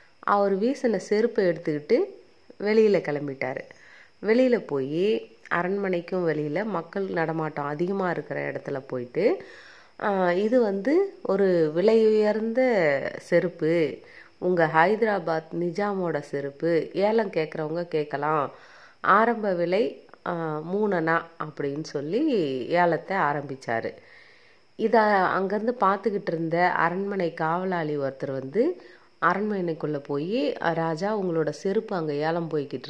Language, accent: Tamil, native